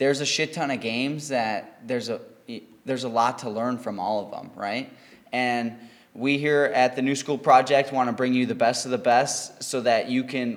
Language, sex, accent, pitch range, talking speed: English, male, American, 125-145 Hz, 225 wpm